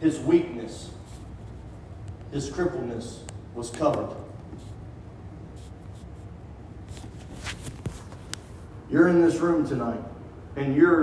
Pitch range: 95-150 Hz